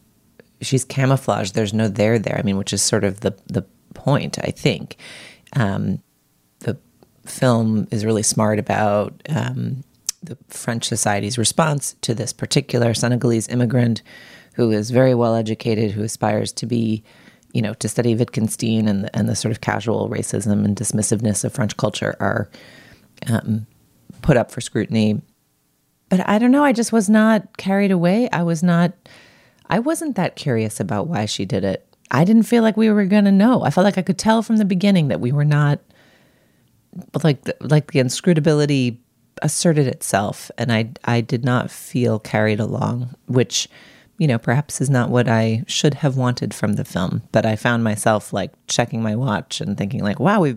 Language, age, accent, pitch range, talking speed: English, 30-49, American, 110-155 Hz, 180 wpm